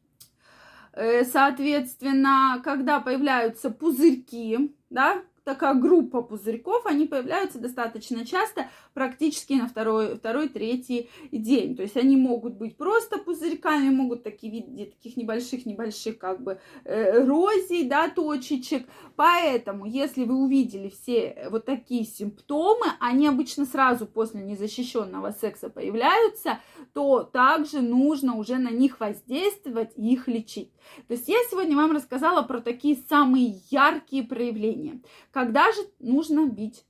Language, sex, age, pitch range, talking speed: Russian, female, 20-39, 230-295 Hz, 120 wpm